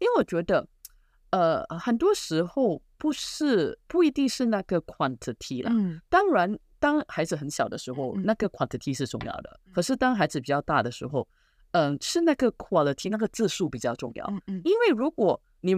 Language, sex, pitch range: Chinese, female, 135-205 Hz